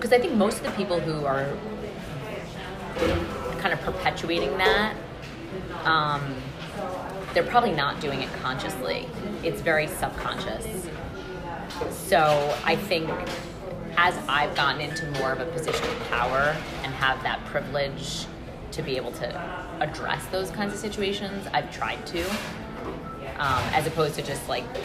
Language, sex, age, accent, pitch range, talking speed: English, female, 20-39, American, 145-185 Hz, 140 wpm